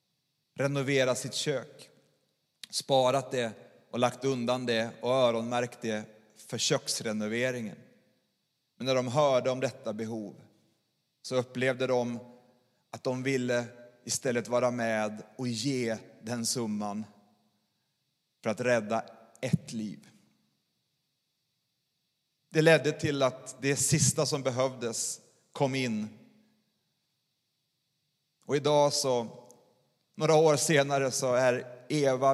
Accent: native